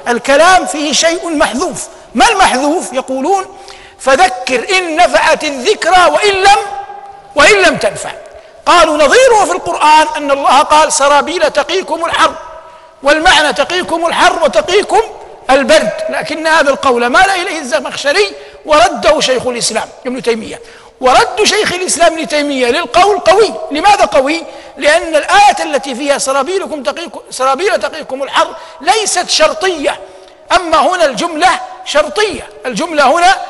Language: Arabic